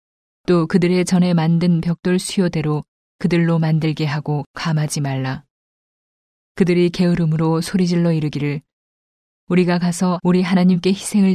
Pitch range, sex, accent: 155-180 Hz, female, native